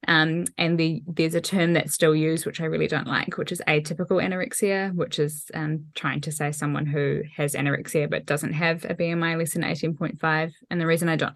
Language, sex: English, female